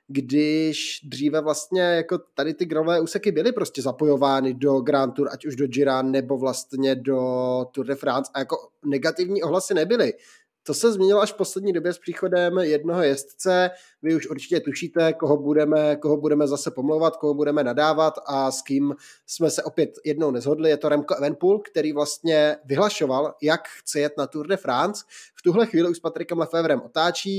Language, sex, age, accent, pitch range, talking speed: Czech, male, 20-39, native, 135-160 Hz, 180 wpm